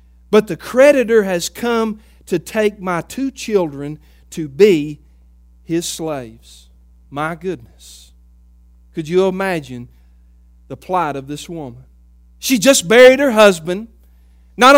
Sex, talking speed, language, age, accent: male, 120 wpm, English, 50-69, American